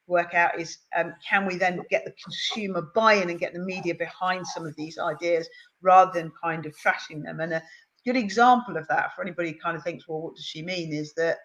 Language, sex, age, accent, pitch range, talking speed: English, female, 40-59, British, 170-230 Hz, 235 wpm